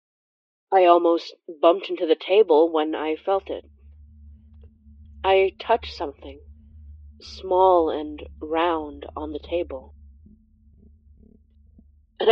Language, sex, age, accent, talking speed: English, female, 20-39, American, 95 wpm